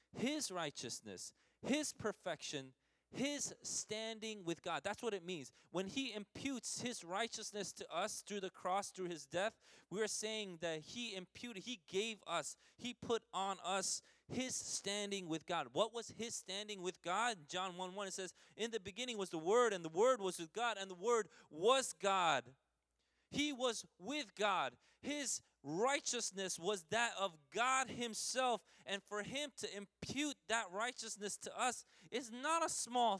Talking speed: 165 wpm